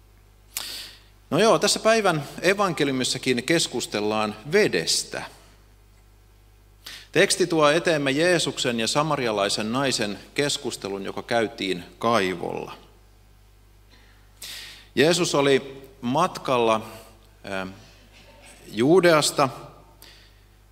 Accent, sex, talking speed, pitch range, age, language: native, male, 65 wpm, 100-140 Hz, 30-49, Finnish